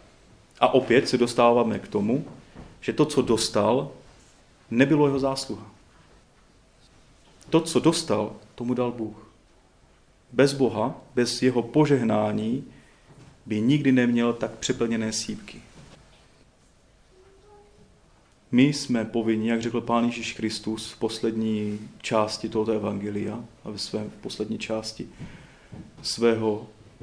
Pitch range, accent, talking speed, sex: 110-130 Hz, native, 105 wpm, male